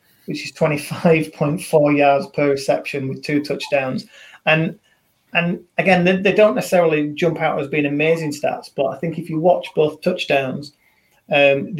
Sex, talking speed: male, 160 wpm